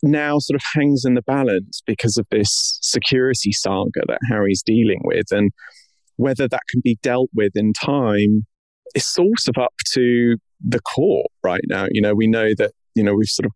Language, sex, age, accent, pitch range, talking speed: English, male, 30-49, British, 100-120 Hz, 195 wpm